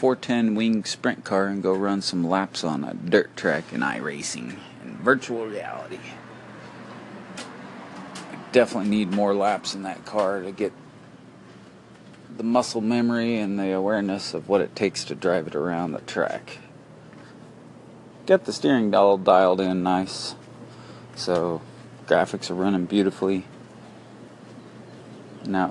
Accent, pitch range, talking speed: American, 90-130 Hz, 135 wpm